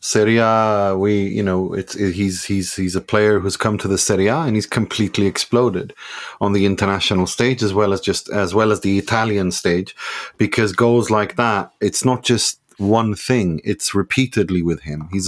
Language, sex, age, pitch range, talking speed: English, male, 30-49, 95-110 Hz, 195 wpm